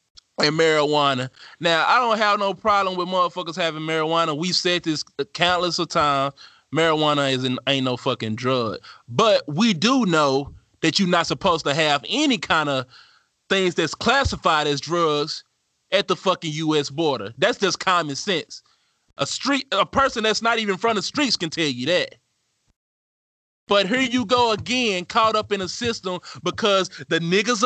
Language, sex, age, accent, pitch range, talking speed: English, male, 20-39, American, 155-195 Hz, 175 wpm